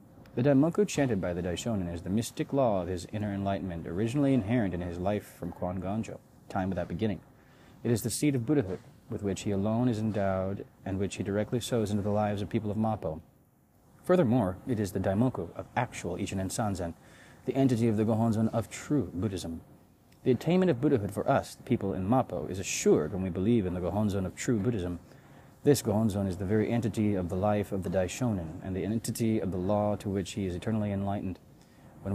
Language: English